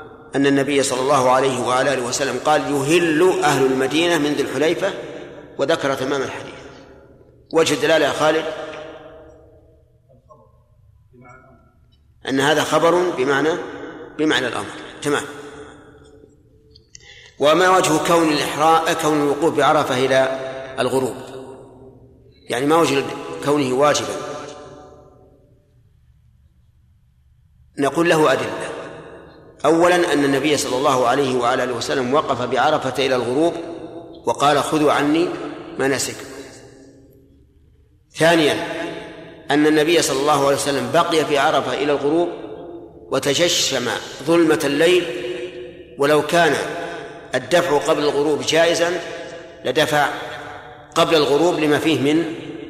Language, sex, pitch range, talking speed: Arabic, male, 135-165 Hz, 100 wpm